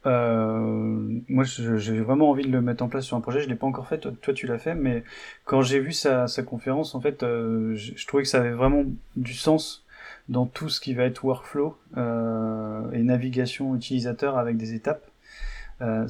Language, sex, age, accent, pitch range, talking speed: French, male, 20-39, French, 115-140 Hz, 215 wpm